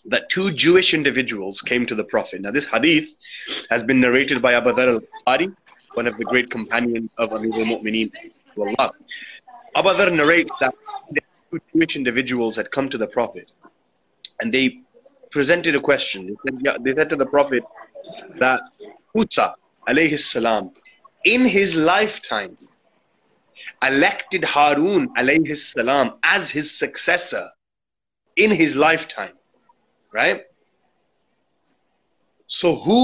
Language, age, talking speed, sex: English, 30-49, 125 wpm, male